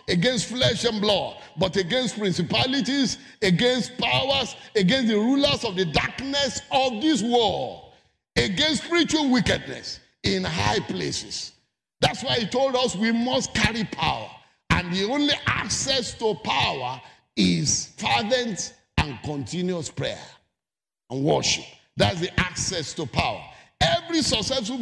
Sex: male